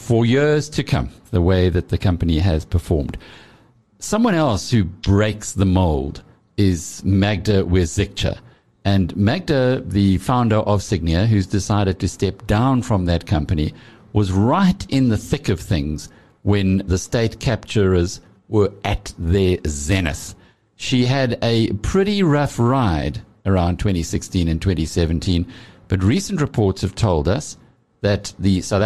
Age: 50-69